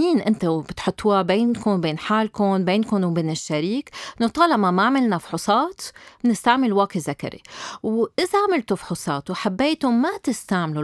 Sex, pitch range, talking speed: female, 180-265 Hz, 135 wpm